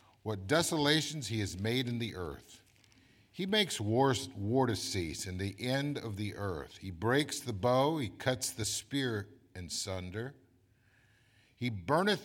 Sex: male